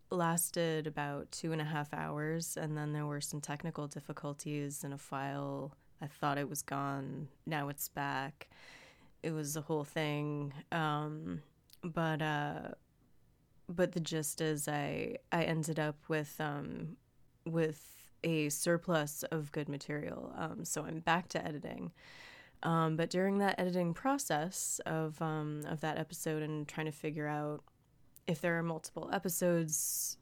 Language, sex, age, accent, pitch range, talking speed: English, female, 20-39, American, 150-165 Hz, 150 wpm